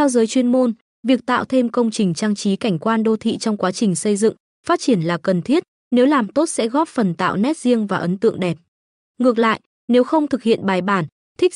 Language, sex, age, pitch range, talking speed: Vietnamese, female, 20-39, 200-250 Hz, 245 wpm